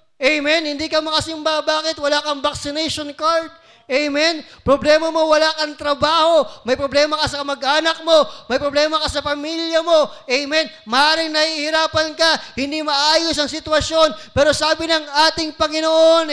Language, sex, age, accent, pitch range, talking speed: Filipino, male, 20-39, native, 255-315 Hz, 145 wpm